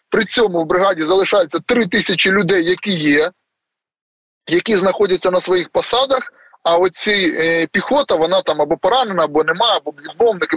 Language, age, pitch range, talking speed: Ukrainian, 20-39, 165-215 Hz, 155 wpm